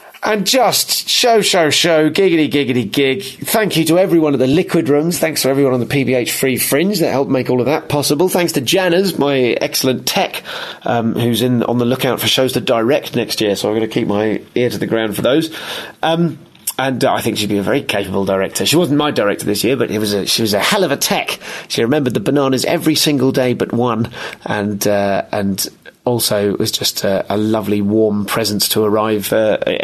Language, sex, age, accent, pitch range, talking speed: English, male, 30-49, British, 110-160 Hz, 225 wpm